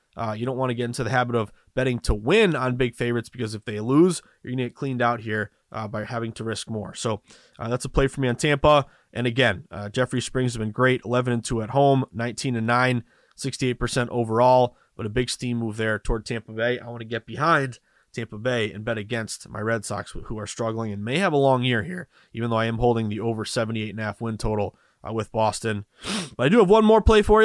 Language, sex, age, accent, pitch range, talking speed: English, male, 20-39, American, 115-150 Hz, 240 wpm